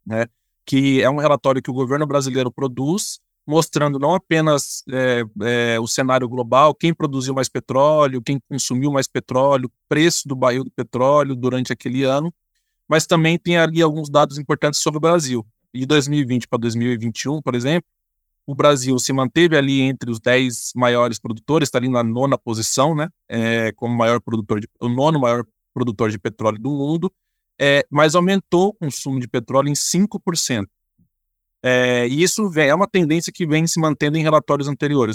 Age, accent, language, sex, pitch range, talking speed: 20-39, Brazilian, Portuguese, male, 125-160 Hz, 160 wpm